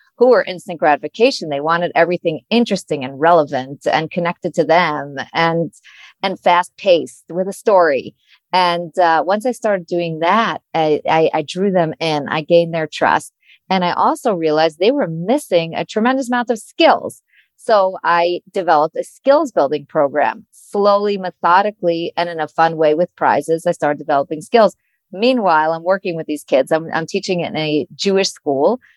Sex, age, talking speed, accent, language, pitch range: female, 40-59, 170 wpm, American, English, 165-220 Hz